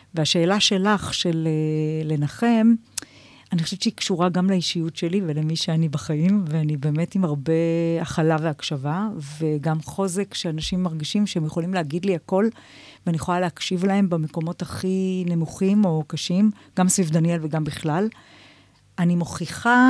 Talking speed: 140 wpm